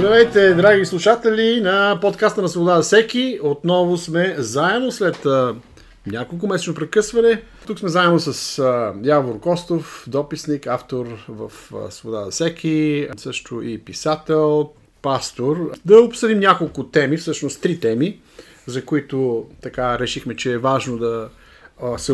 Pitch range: 125-160 Hz